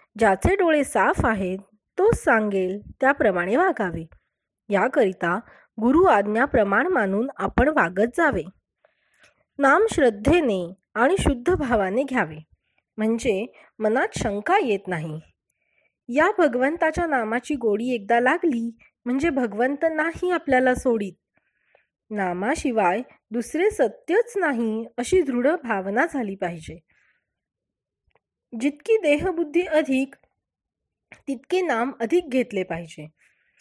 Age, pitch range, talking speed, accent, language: 20-39, 215-300 Hz, 90 wpm, native, Marathi